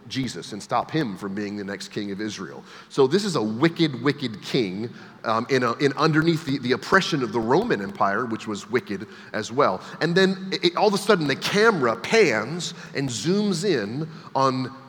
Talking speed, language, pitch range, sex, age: 200 wpm, English, 125-165 Hz, male, 30-49